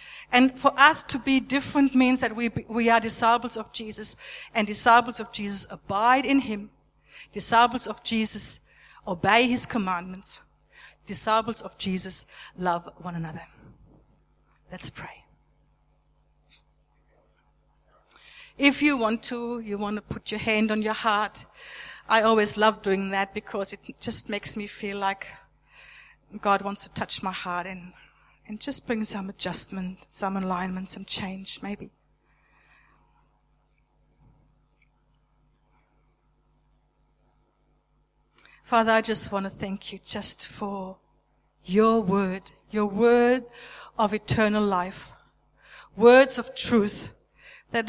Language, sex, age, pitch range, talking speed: English, female, 60-79, 195-240 Hz, 120 wpm